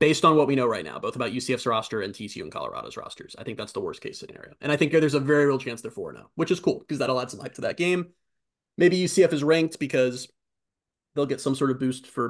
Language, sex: English, male